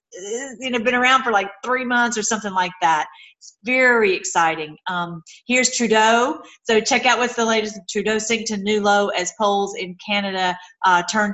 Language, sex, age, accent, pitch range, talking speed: English, female, 40-59, American, 195-245 Hz, 185 wpm